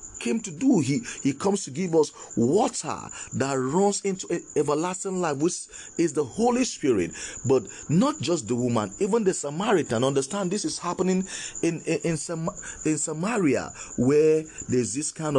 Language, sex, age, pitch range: English, male, 40-59, 105-175 Hz